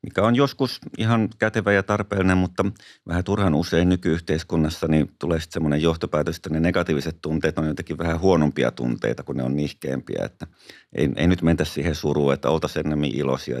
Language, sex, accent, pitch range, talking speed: Finnish, male, native, 70-85 Hz, 180 wpm